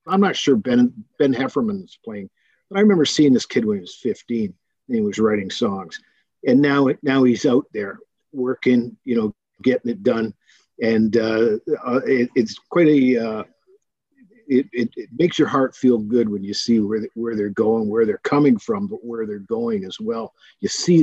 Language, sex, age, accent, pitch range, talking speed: English, male, 50-69, American, 125-210 Hz, 200 wpm